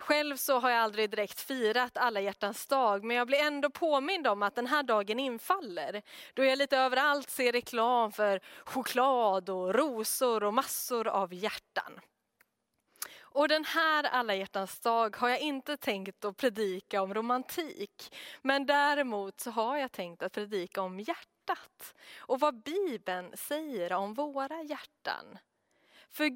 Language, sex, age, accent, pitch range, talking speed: Swedish, female, 20-39, native, 215-295 Hz, 155 wpm